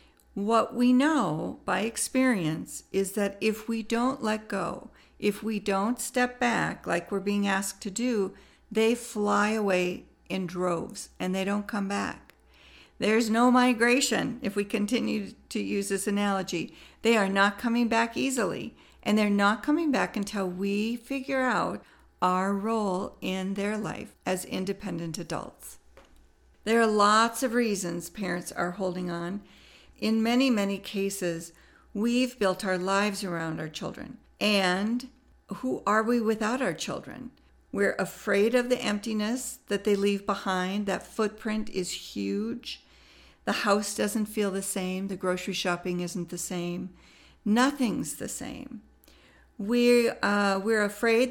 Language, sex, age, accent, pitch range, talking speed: English, female, 50-69, American, 190-230 Hz, 145 wpm